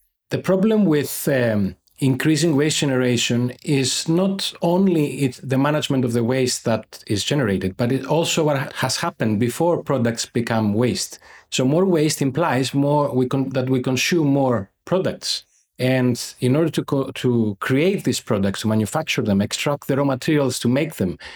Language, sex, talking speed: English, male, 170 wpm